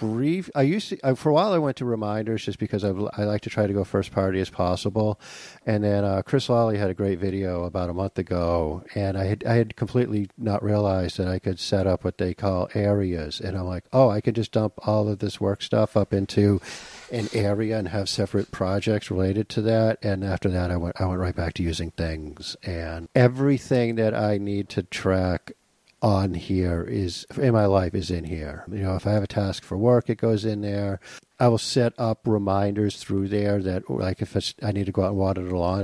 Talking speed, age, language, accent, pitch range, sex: 230 wpm, 50-69, English, American, 90-110 Hz, male